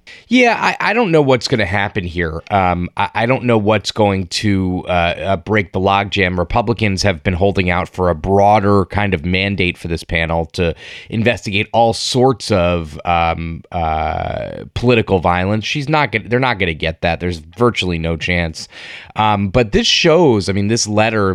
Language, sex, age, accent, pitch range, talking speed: English, male, 20-39, American, 95-115 Hz, 205 wpm